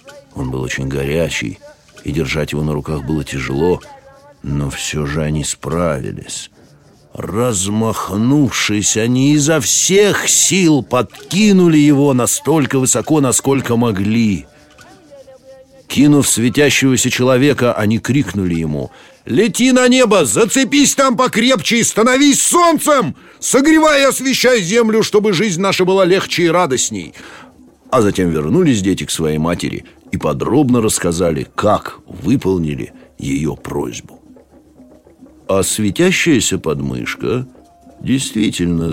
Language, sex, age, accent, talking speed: Russian, male, 60-79, native, 110 wpm